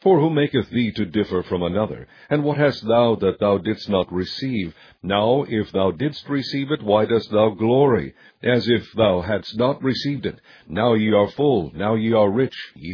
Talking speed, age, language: 200 wpm, 60-79, English